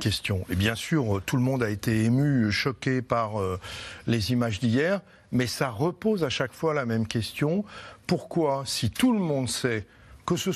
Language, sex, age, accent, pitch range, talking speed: French, male, 60-79, French, 110-150 Hz, 180 wpm